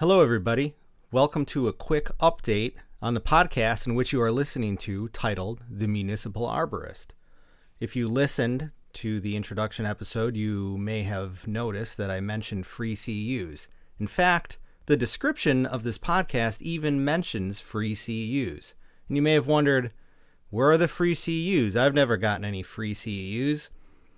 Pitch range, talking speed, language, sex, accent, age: 105-140 Hz, 155 wpm, English, male, American, 30-49